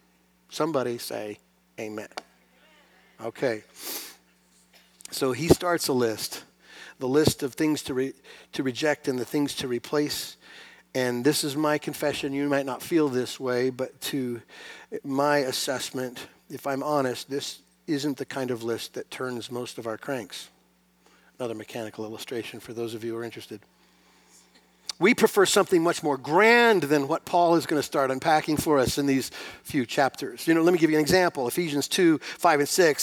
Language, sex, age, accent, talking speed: English, male, 50-69, American, 175 wpm